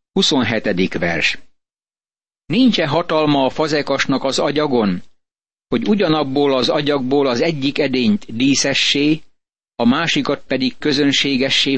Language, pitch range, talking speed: Hungarian, 125-155 Hz, 100 wpm